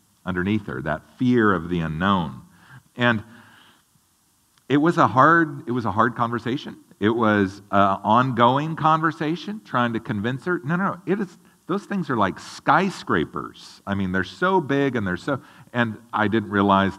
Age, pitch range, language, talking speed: 50-69, 105-155 Hz, English, 170 wpm